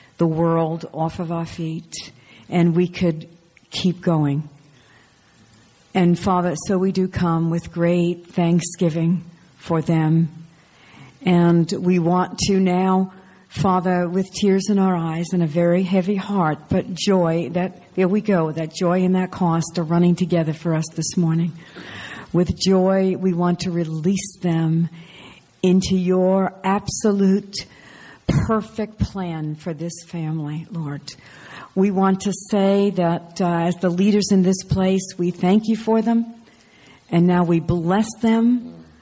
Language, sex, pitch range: English, female, 165-190 Hz